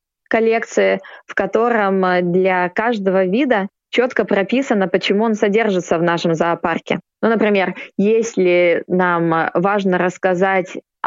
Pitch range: 180-210 Hz